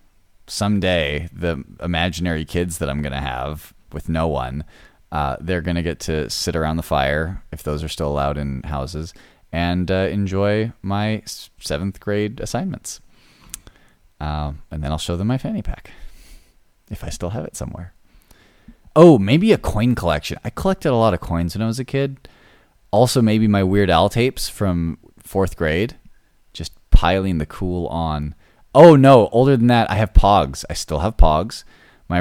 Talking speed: 175 wpm